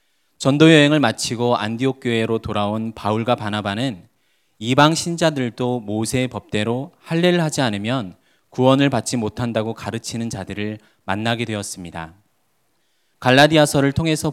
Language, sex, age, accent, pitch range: Korean, male, 20-39, native, 110-140 Hz